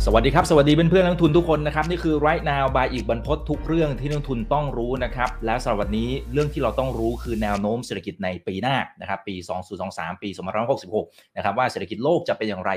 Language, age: Thai, 30-49